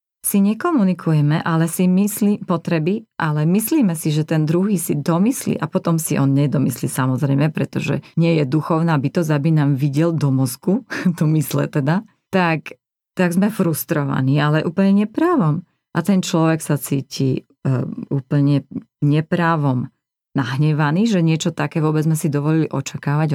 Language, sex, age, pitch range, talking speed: Slovak, female, 30-49, 145-195 Hz, 145 wpm